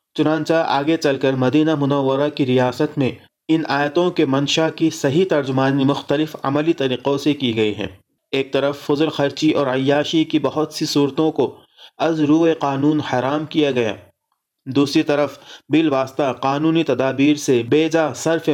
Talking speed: 160 wpm